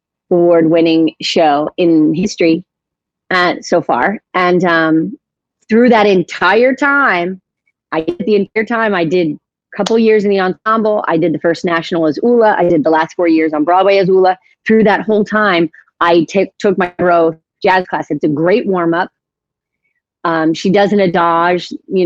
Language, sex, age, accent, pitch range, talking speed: English, female, 30-49, American, 170-215 Hz, 175 wpm